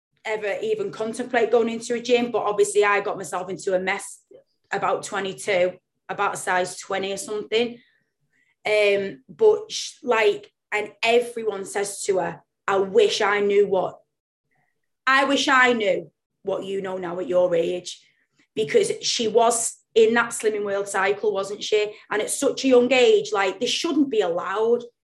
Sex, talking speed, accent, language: female, 165 wpm, British, English